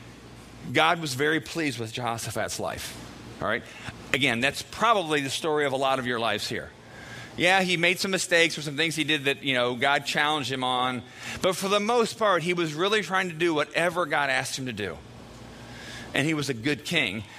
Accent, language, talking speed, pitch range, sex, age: American, English, 210 wpm, 115-160 Hz, male, 40-59